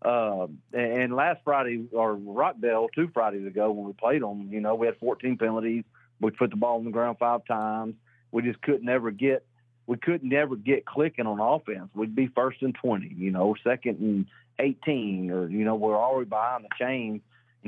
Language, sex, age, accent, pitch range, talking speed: English, male, 40-59, American, 110-135 Hz, 205 wpm